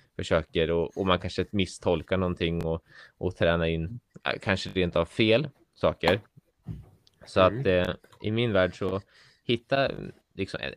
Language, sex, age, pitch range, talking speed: Swedish, male, 20-39, 90-105 Hz, 145 wpm